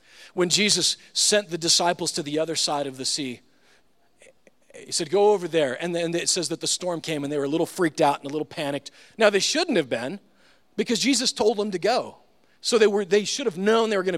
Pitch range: 145-205 Hz